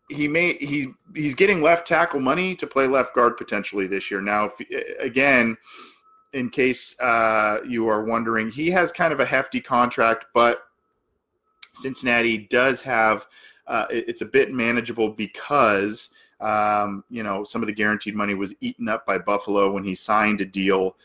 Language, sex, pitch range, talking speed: English, male, 105-150 Hz, 165 wpm